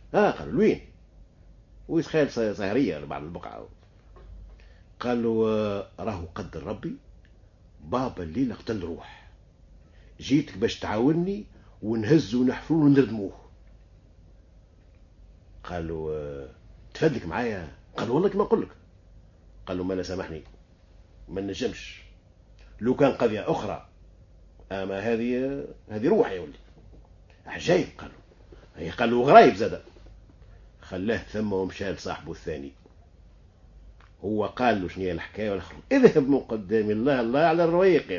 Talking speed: 105 wpm